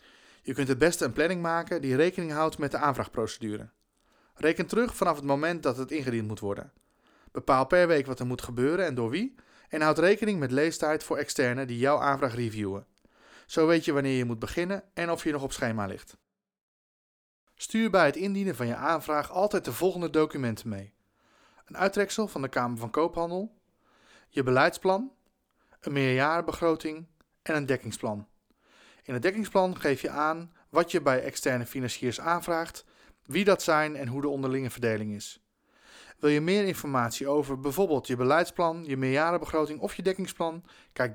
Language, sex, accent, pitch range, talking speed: Dutch, male, Dutch, 125-170 Hz, 175 wpm